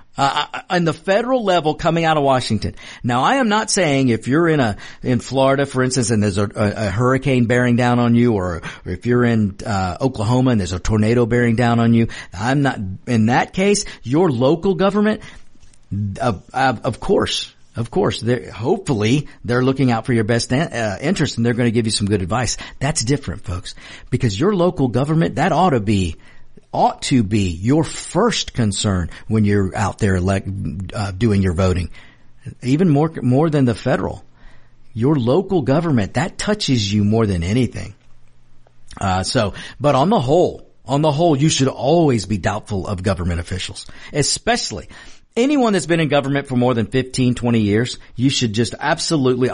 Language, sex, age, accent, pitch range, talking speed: English, male, 50-69, American, 105-160 Hz, 180 wpm